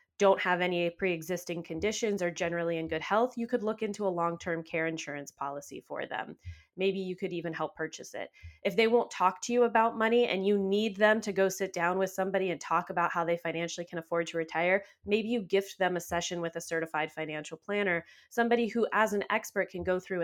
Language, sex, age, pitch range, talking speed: English, female, 20-39, 165-210 Hz, 220 wpm